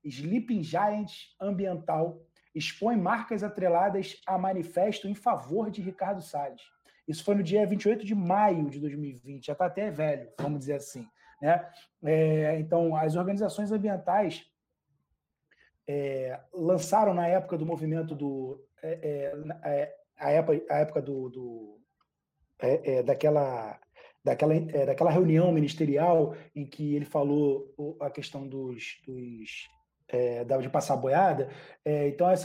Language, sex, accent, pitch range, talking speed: Portuguese, male, Brazilian, 150-205 Hz, 115 wpm